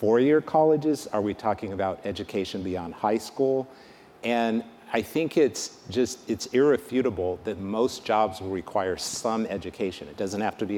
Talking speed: 160 wpm